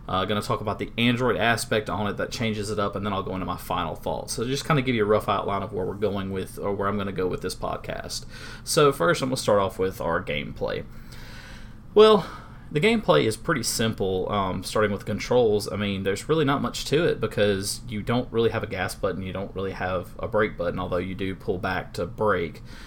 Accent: American